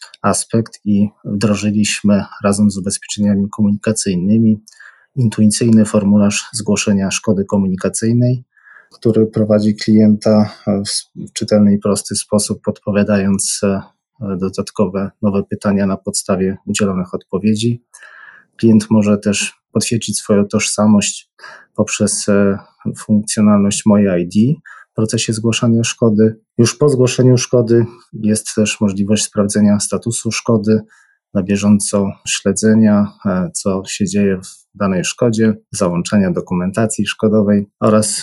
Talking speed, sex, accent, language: 100 wpm, male, native, Polish